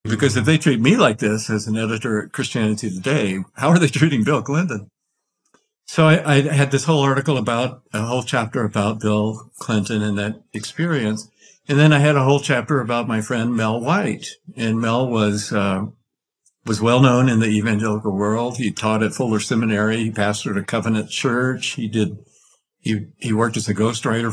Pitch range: 105-125 Hz